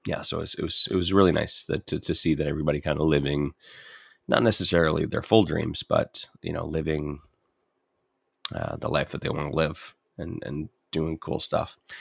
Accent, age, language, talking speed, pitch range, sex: American, 30-49, English, 205 wpm, 75-85 Hz, male